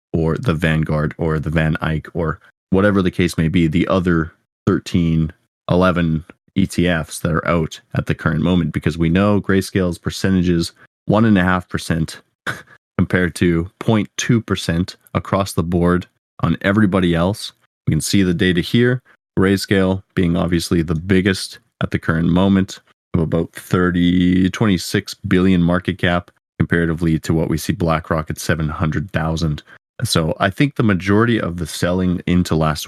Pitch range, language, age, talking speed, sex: 80-95 Hz, English, 20-39, 145 wpm, male